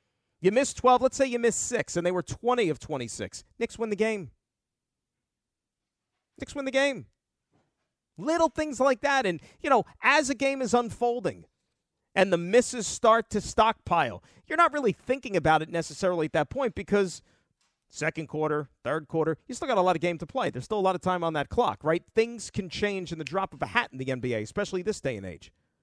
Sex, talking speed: male, 210 wpm